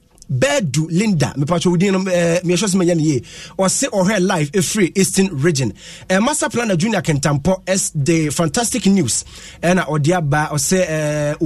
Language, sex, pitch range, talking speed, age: English, male, 150-185 Hz, 180 wpm, 30-49